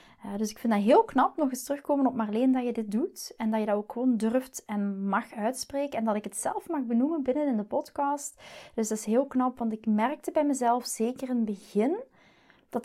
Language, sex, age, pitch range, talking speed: Dutch, female, 30-49, 220-270 Hz, 245 wpm